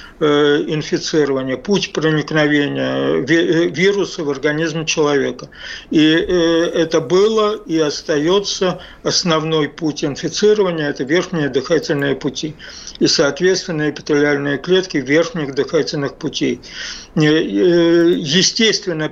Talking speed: 85 wpm